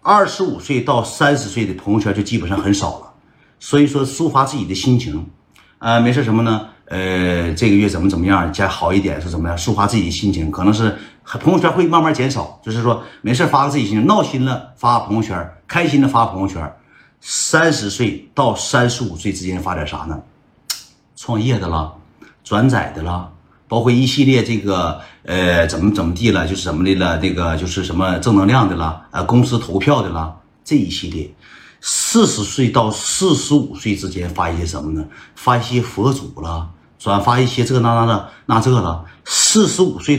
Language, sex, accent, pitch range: Chinese, male, native, 90-125 Hz